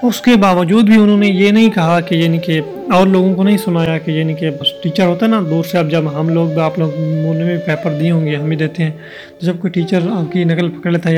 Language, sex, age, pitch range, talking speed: Urdu, male, 30-49, 160-195 Hz, 270 wpm